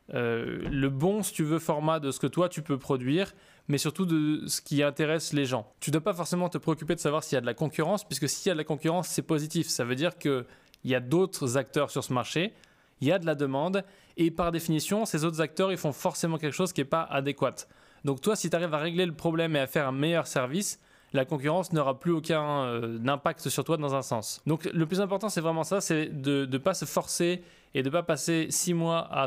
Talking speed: 260 wpm